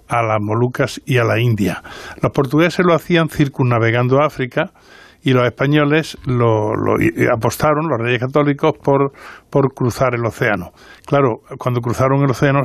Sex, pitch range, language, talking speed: male, 120-150 Hz, Spanish, 150 wpm